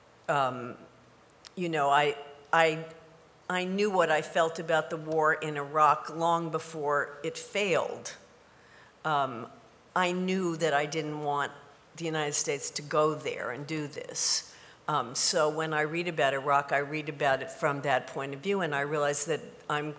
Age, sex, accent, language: 50-69, female, American, English